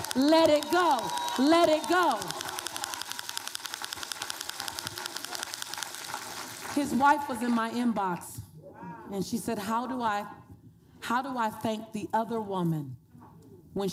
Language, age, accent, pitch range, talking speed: English, 40-59, American, 175-225 Hz, 110 wpm